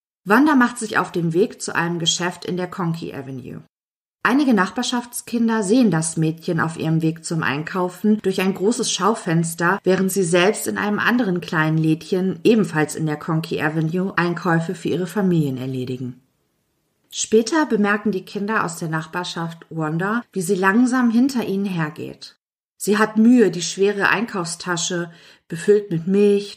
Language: German